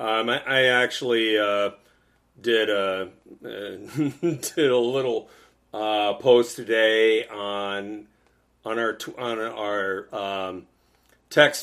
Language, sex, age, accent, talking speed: English, male, 40-59, American, 110 wpm